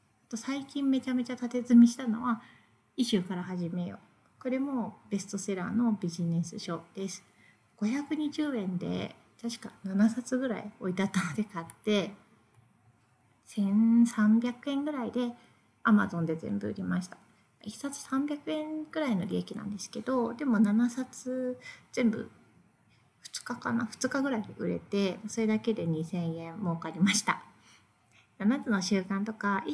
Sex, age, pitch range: female, 30-49, 185-245 Hz